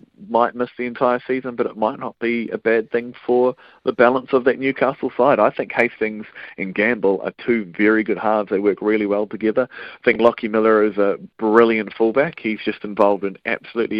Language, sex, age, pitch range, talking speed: English, male, 30-49, 110-125 Hz, 205 wpm